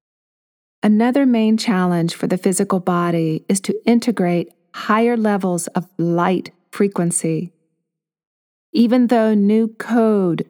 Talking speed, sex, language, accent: 110 wpm, female, English, American